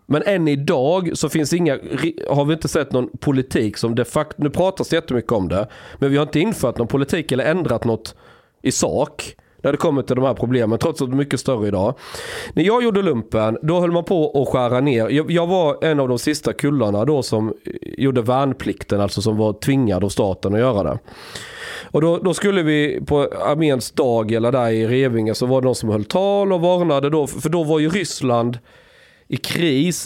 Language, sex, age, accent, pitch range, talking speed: Swedish, male, 30-49, native, 110-150 Hz, 215 wpm